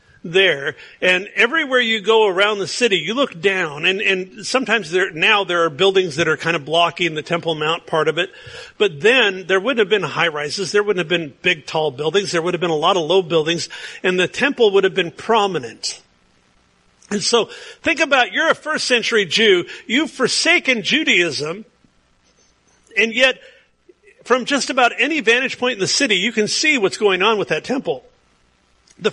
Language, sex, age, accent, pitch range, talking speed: English, male, 50-69, American, 175-260 Hz, 195 wpm